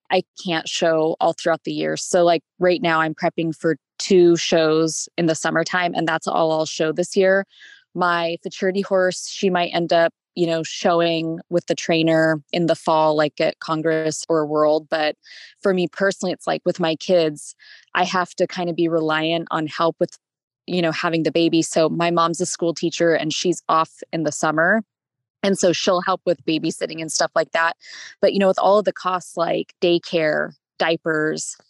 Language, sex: English, female